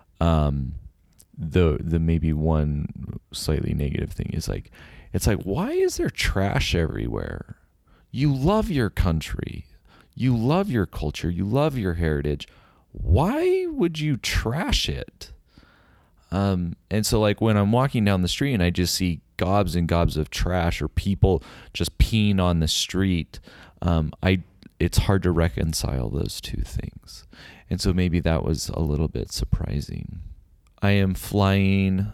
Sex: male